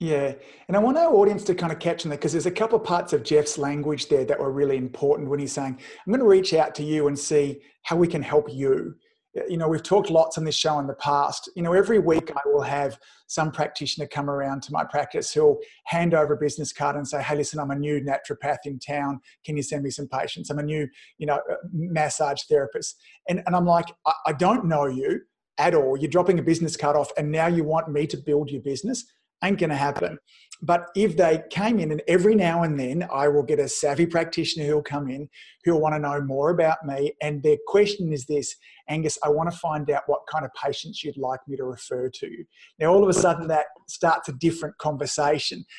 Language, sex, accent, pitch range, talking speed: English, male, Australian, 145-175 Hz, 235 wpm